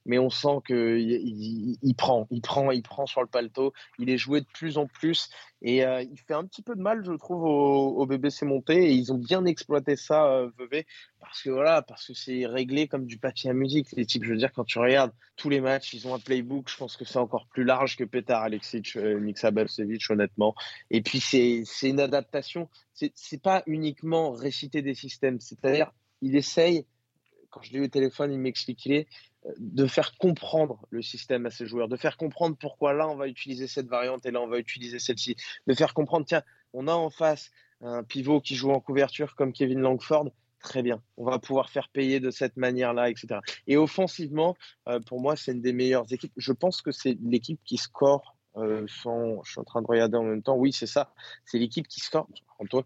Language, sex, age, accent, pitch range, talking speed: French, male, 20-39, French, 120-145 Hz, 220 wpm